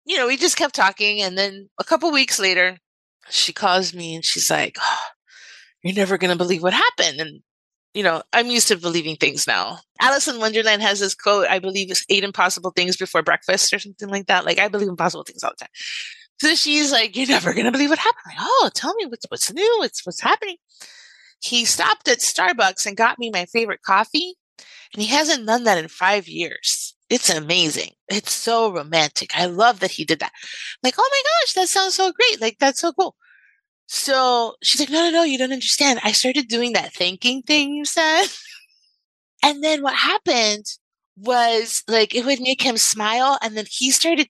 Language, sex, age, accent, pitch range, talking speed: English, female, 30-49, American, 200-335 Hz, 210 wpm